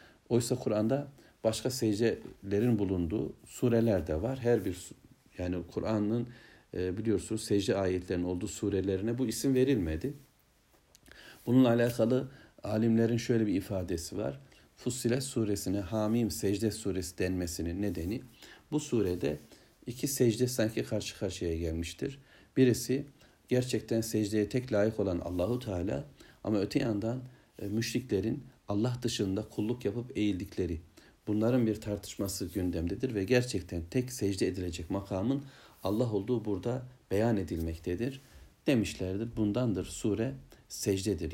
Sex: male